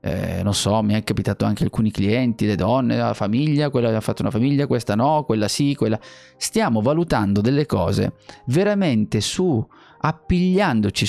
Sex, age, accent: male, 30-49, native